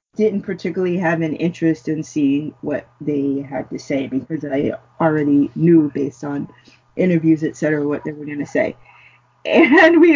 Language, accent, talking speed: English, American, 165 wpm